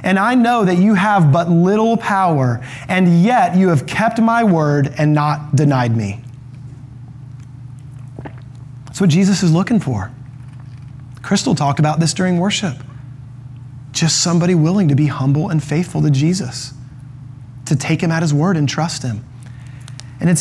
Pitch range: 130-215 Hz